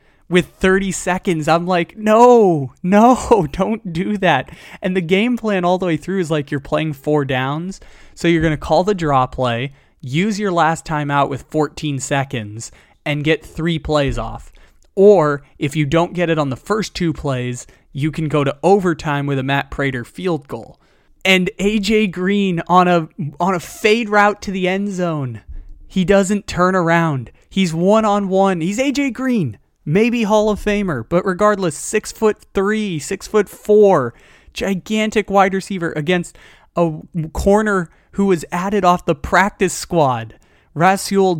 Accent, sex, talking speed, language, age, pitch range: American, male, 165 wpm, English, 20-39, 145-195 Hz